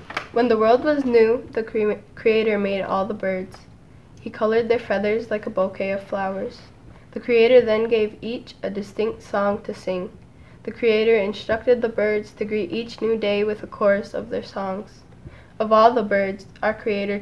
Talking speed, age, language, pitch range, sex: 180 wpm, 10-29, English, 195-225 Hz, female